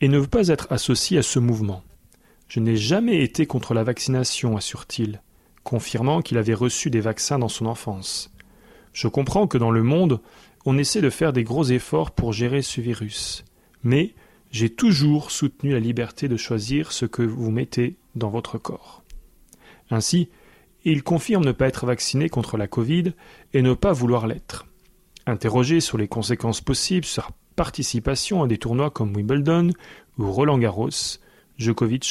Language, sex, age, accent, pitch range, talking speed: French, male, 40-59, French, 115-140 Hz, 170 wpm